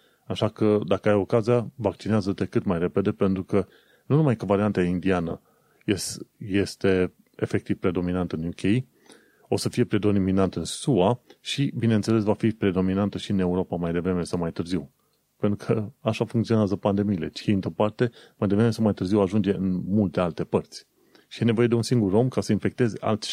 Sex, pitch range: male, 95-115 Hz